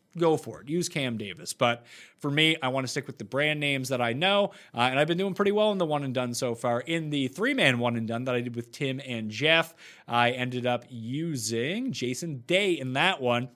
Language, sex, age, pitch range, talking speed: English, male, 30-49, 120-170 Hz, 250 wpm